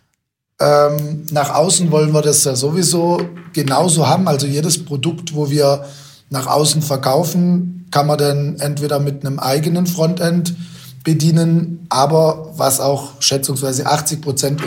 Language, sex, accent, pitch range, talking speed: German, male, German, 140-165 Hz, 130 wpm